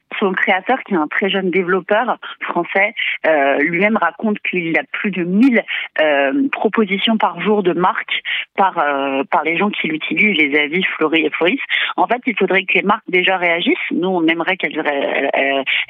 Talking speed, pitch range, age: 190 wpm, 170-210 Hz, 40-59